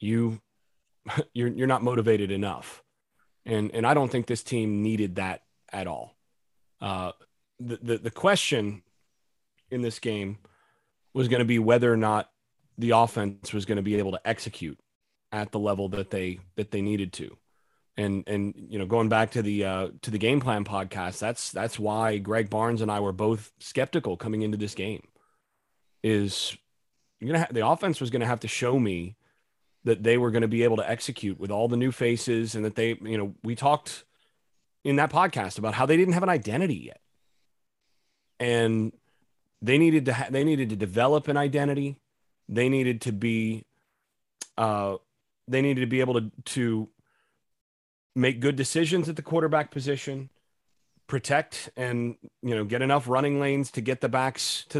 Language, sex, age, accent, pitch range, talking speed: English, male, 30-49, American, 105-135 Hz, 180 wpm